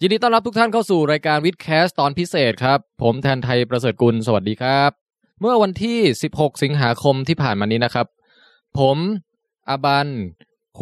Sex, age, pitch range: male, 20-39, 120-170 Hz